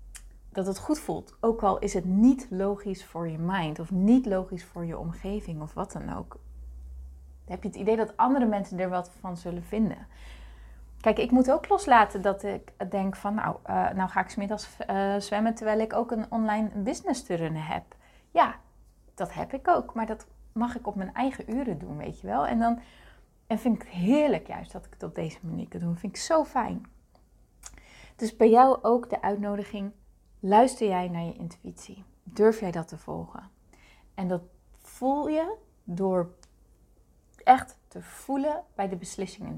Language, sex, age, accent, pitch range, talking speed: Dutch, female, 30-49, Dutch, 180-235 Hz, 195 wpm